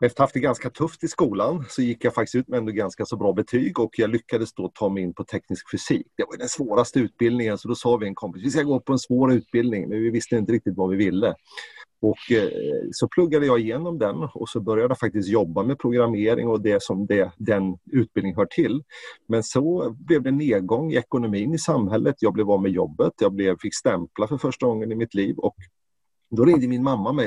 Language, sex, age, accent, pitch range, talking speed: Swedish, male, 30-49, native, 105-140 Hz, 235 wpm